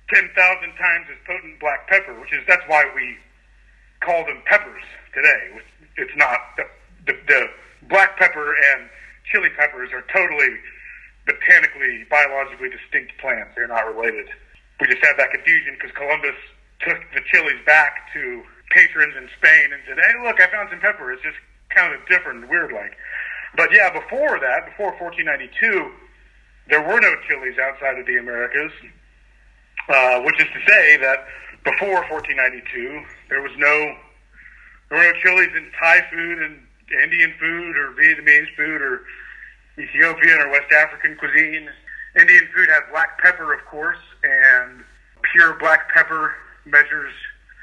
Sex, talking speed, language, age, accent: male, 150 wpm, English, 40-59, American